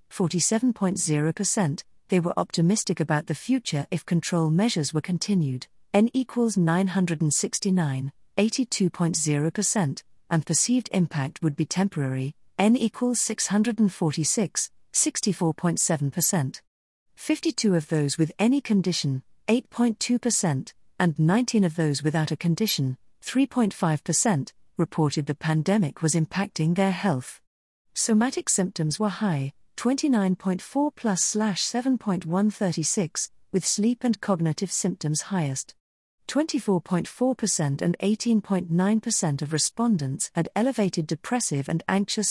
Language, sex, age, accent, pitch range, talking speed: English, female, 50-69, British, 160-215 Hz, 100 wpm